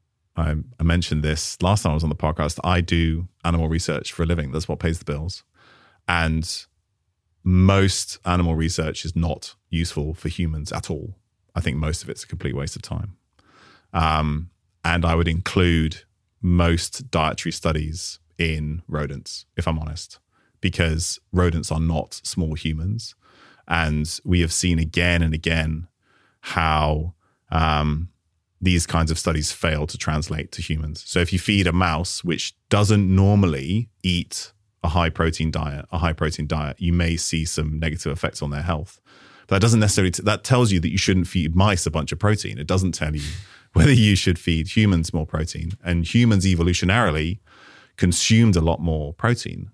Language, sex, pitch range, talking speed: English, male, 80-95 Hz, 175 wpm